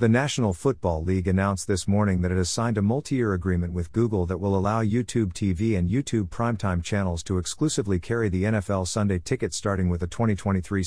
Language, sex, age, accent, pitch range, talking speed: English, male, 50-69, American, 90-115 Hz, 200 wpm